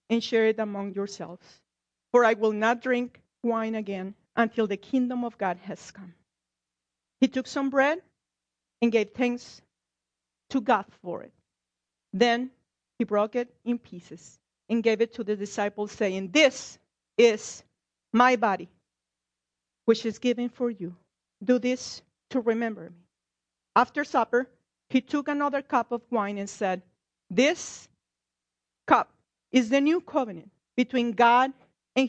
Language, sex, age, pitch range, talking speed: English, female, 40-59, 165-245 Hz, 140 wpm